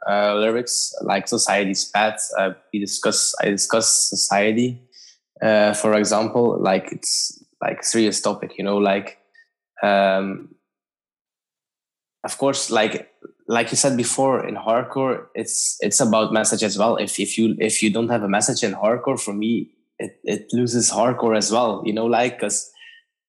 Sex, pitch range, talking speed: male, 105-120 Hz, 155 wpm